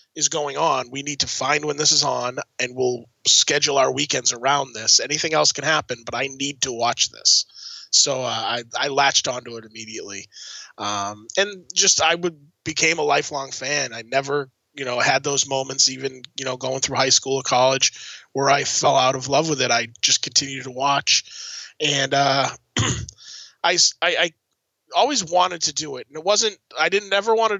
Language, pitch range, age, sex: English, 125-155 Hz, 20-39, male